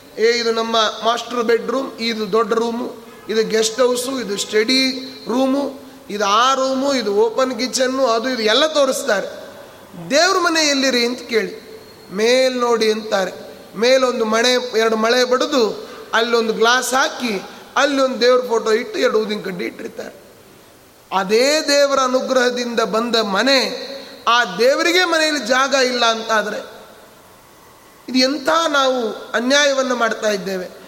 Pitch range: 230-265 Hz